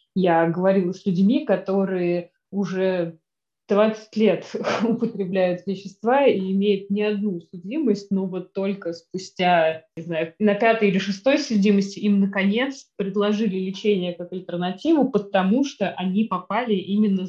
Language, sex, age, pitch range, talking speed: Russian, female, 20-39, 180-210 Hz, 130 wpm